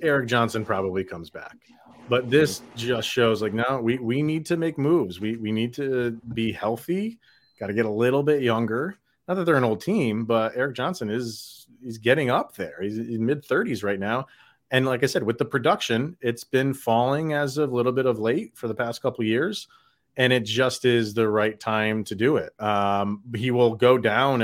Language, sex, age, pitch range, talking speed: English, male, 30-49, 115-140 Hz, 215 wpm